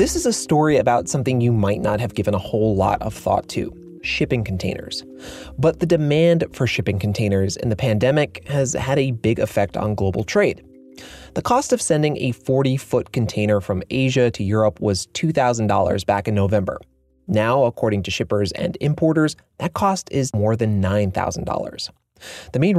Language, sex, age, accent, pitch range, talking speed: English, male, 30-49, American, 105-150 Hz, 175 wpm